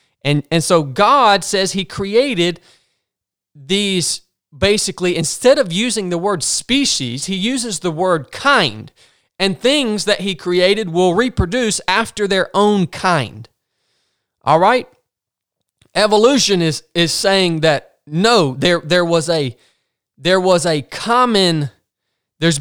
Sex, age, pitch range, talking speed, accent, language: male, 30-49, 150-200 Hz, 125 wpm, American, English